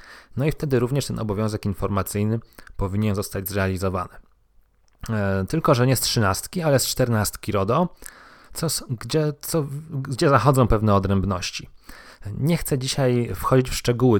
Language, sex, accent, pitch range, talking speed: Polish, male, native, 100-135 Hz, 125 wpm